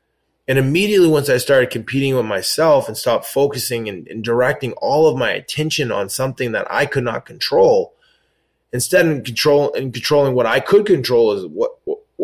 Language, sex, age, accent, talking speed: English, male, 20-39, American, 175 wpm